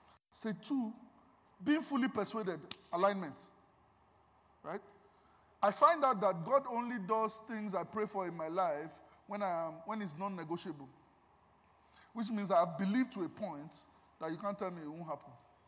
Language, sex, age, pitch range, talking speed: English, male, 20-39, 160-205 Hz, 165 wpm